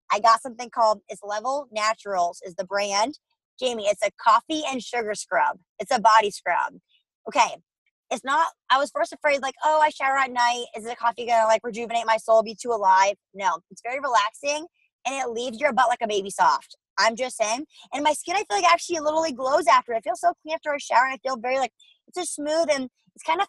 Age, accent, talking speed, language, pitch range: 20-39, American, 235 wpm, English, 215-290 Hz